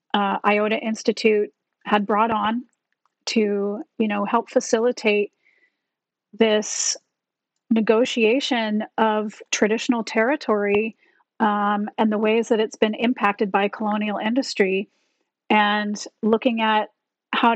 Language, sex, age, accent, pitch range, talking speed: English, female, 30-49, American, 210-245 Hz, 105 wpm